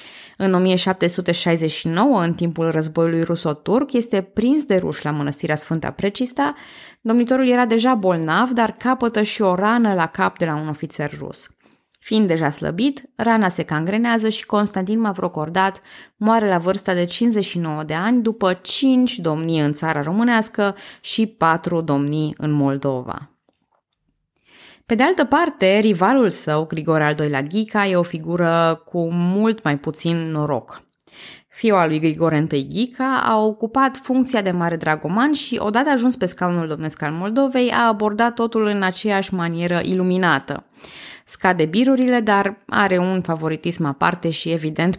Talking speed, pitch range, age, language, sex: 150 wpm, 160-225 Hz, 20-39, Romanian, female